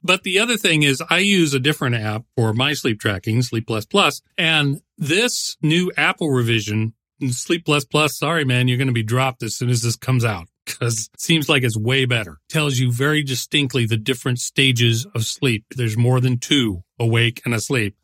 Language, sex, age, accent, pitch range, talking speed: English, male, 40-59, American, 115-150 Hz, 205 wpm